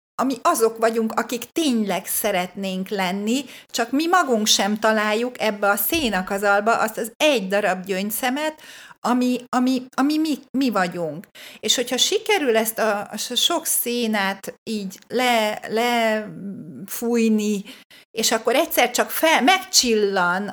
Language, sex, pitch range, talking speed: Hungarian, female, 215-270 Hz, 115 wpm